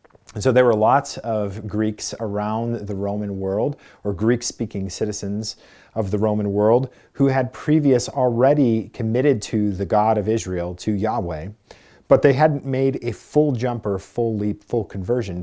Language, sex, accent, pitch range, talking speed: English, male, American, 105-135 Hz, 165 wpm